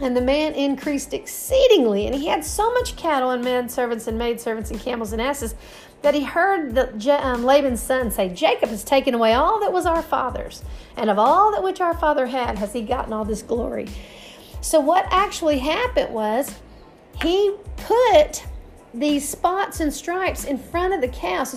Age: 50-69